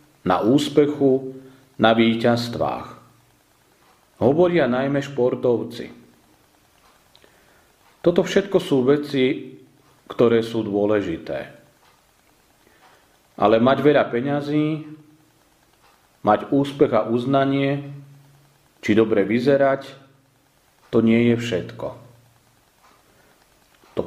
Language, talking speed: Slovak, 75 wpm